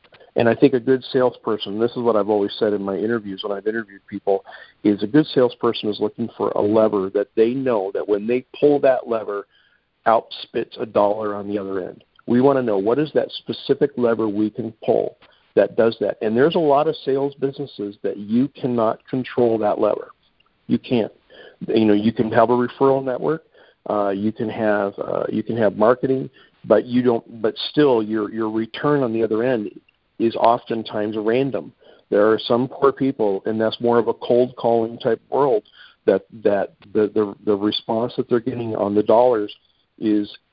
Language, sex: English, male